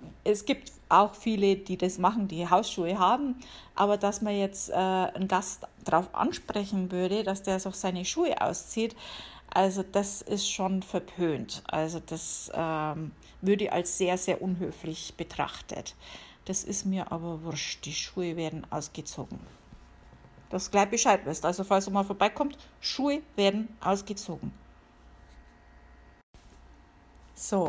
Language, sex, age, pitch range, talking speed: German, female, 50-69, 165-200 Hz, 135 wpm